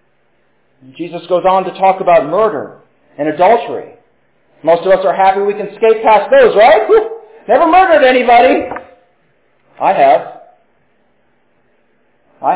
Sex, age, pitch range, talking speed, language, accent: male, 40-59, 185-290 Hz, 125 wpm, English, American